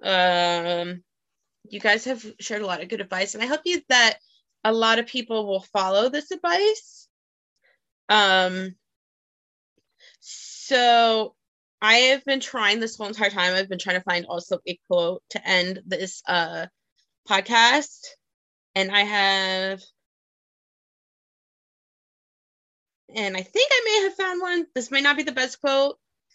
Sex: female